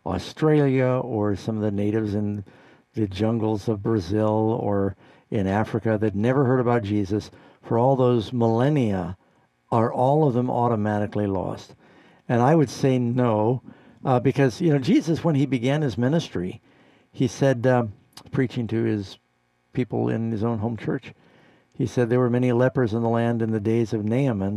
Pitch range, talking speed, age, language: 105-130 Hz, 170 wpm, 60-79, English